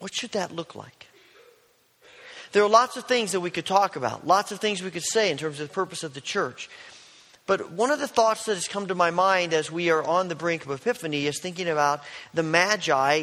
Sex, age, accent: male, 40-59, American